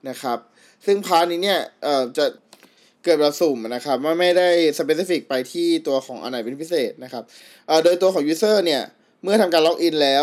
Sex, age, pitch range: male, 20-39, 135-175 Hz